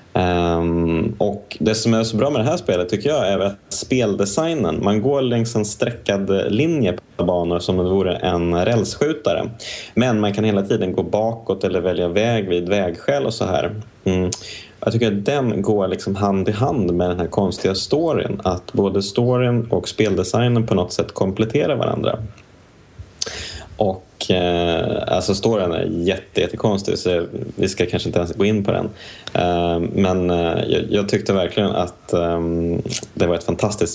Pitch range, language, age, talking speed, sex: 90-110 Hz, Swedish, 20-39, 165 wpm, male